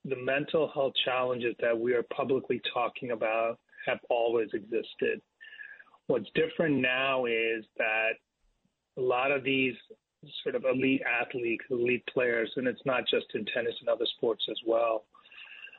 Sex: male